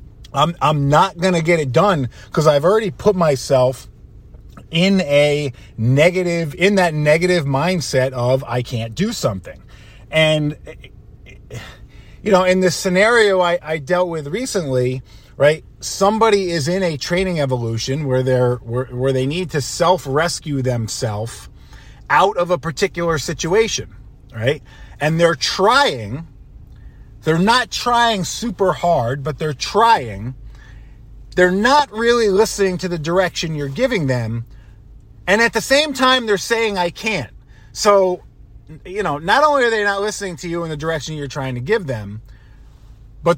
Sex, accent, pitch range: male, American, 125-185 Hz